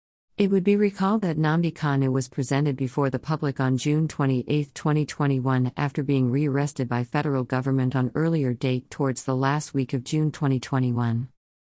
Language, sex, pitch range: English, female, 130-150 Hz